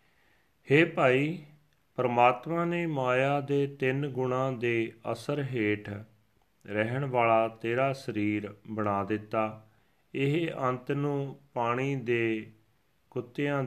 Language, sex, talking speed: Punjabi, male, 100 wpm